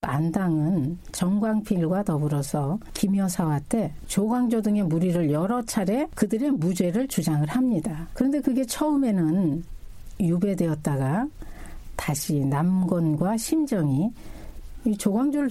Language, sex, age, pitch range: Korean, female, 60-79, 165-235 Hz